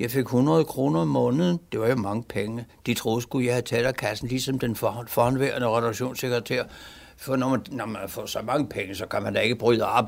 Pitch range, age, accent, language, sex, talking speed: 120-200 Hz, 60-79, native, Danish, male, 230 wpm